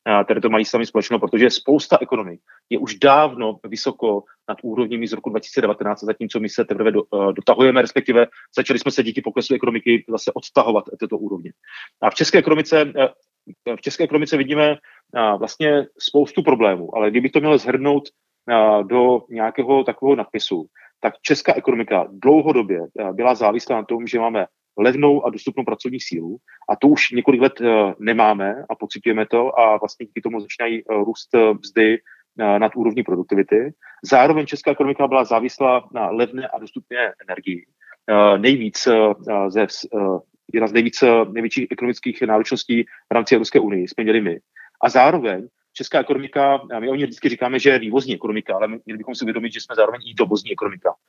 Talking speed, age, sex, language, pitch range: 155 wpm, 30-49, male, Czech, 110-135 Hz